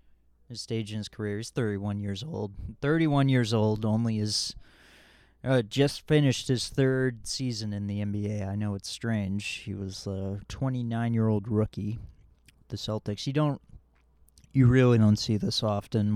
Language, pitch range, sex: English, 80-115 Hz, male